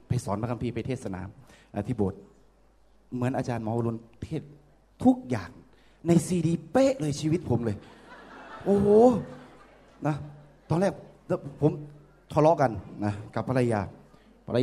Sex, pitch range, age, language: male, 115-160 Hz, 20-39, Thai